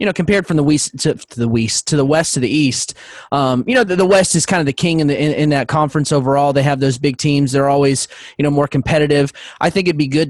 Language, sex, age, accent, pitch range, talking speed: English, male, 20-39, American, 135-155 Hz, 290 wpm